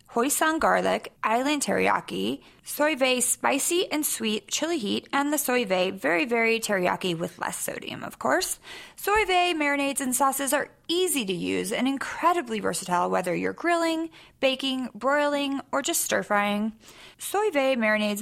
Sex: female